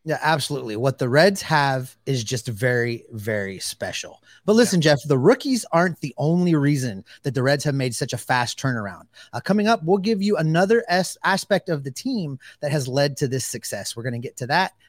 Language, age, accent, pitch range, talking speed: English, 30-49, American, 120-165 Hz, 210 wpm